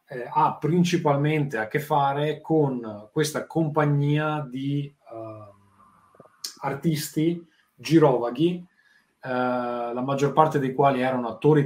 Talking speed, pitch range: 110 wpm, 115-145 Hz